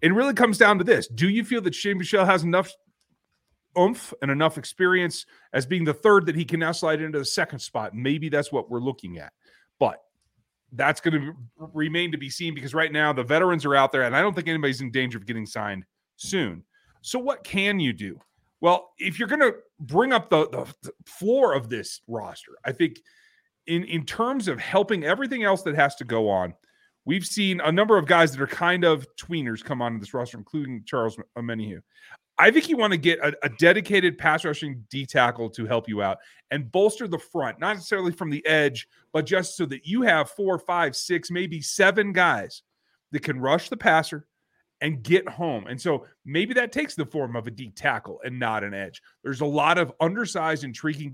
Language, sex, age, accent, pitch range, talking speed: English, male, 30-49, American, 130-185 Hz, 210 wpm